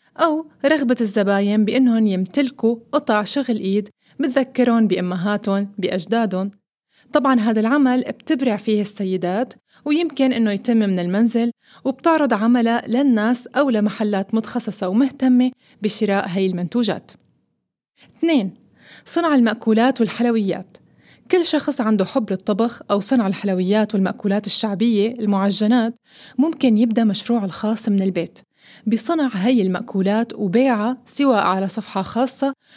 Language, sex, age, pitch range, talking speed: Arabic, female, 20-39, 205-255 Hz, 110 wpm